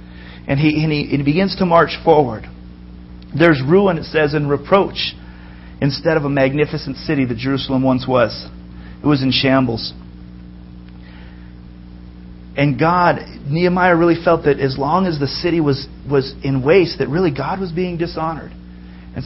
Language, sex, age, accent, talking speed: English, male, 40-59, American, 160 wpm